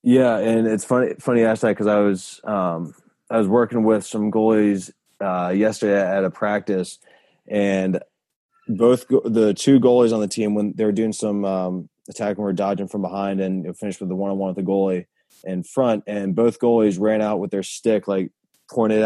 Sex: male